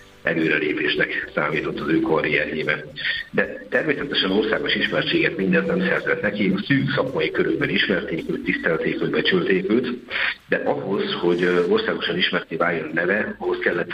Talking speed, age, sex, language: 135 wpm, 60-79, male, Hungarian